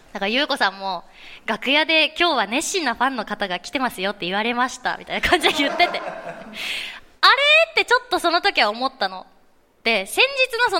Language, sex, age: Japanese, female, 20-39